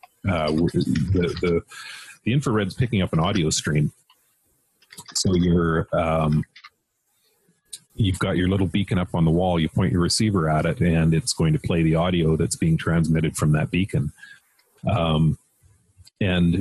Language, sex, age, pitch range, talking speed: English, male, 40-59, 80-100 Hz, 160 wpm